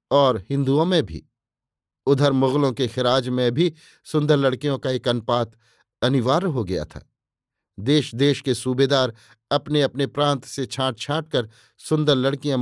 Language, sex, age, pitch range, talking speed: Hindi, male, 50-69, 120-150 Hz, 145 wpm